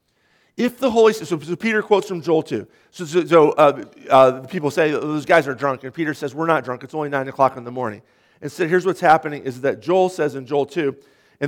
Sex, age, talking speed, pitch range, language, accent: male, 40-59, 245 wpm, 125-165 Hz, English, American